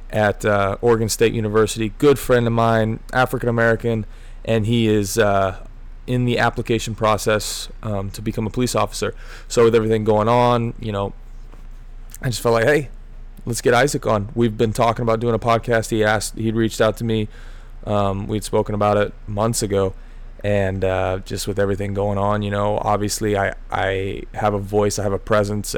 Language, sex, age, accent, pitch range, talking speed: English, male, 20-39, American, 100-115 Hz, 190 wpm